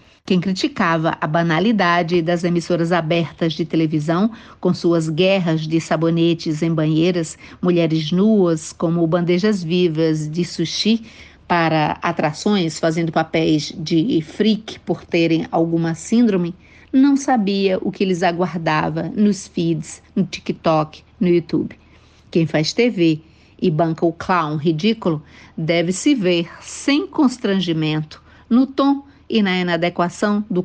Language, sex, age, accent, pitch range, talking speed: Portuguese, female, 50-69, Brazilian, 165-195 Hz, 125 wpm